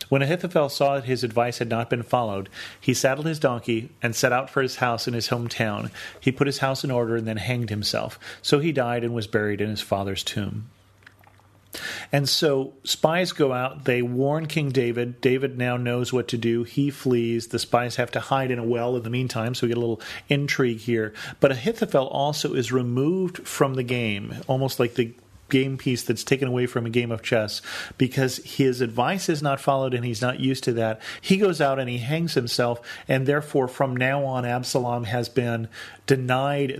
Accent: American